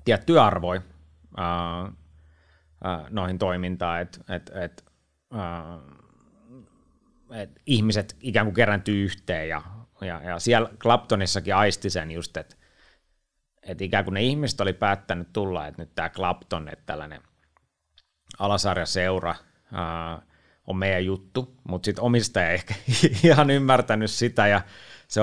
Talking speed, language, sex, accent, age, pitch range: 130 wpm, Finnish, male, native, 30-49, 85-110 Hz